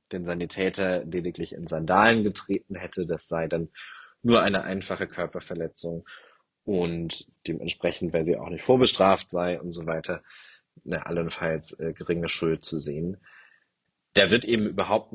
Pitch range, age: 85-100 Hz, 30-49